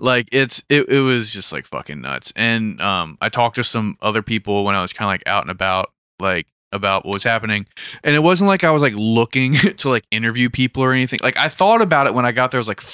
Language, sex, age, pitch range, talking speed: English, male, 20-39, 100-125 Hz, 265 wpm